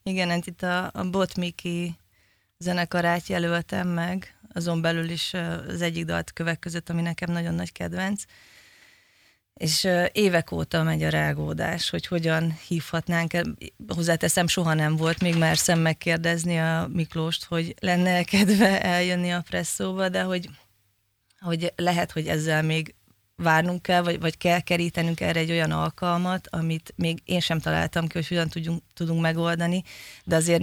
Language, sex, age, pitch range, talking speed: Hungarian, female, 20-39, 155-175 Hz, 145 wpm